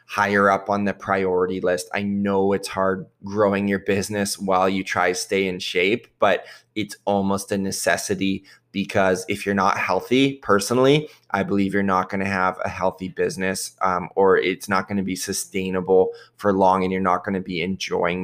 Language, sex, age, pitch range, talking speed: English, male, 20-39, 95-110 Hz, 190 wpm